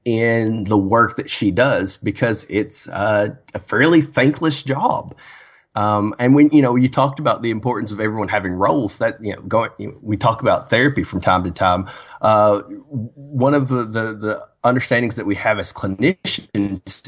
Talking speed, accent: 180 wpm, American